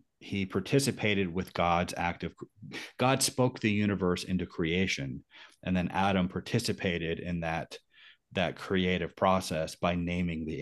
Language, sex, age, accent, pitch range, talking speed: English, male, 40-59, American, 85-105 Hz, 135 wpm